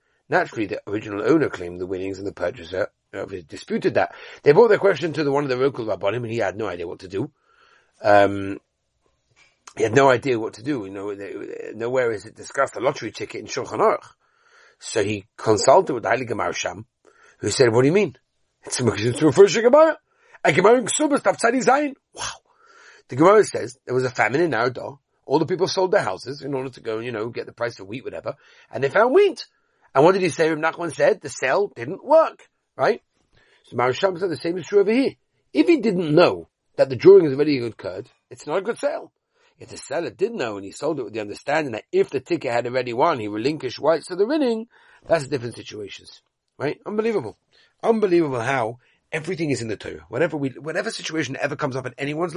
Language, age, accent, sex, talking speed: English, 40-59, British, male, 220 wpm